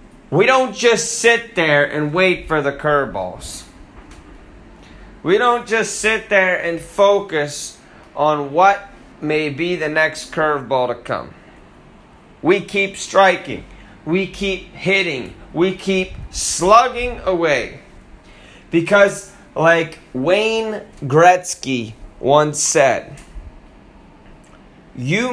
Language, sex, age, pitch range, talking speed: English, male, 30-49, 140-195 Hz, 100 wpm